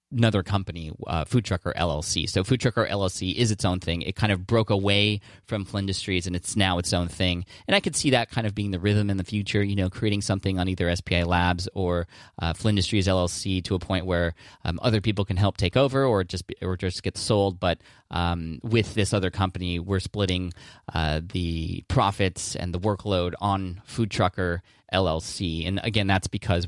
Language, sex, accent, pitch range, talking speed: English, male, American, 90-105 Hz, 205 wpm